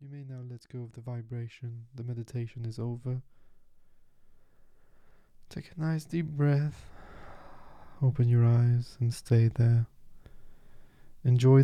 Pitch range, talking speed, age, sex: 115-140 Hz, 125 wpm, 20-39, male